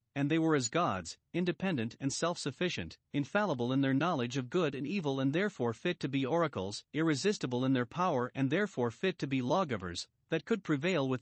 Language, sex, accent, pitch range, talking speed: English, male, American, 130-180 Hz, 200 wpm